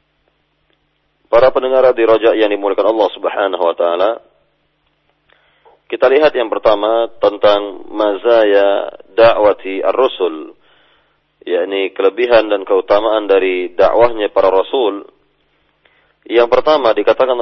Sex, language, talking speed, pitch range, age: male, Indonesian, 100 wpm, 105-130 Hz, 40-59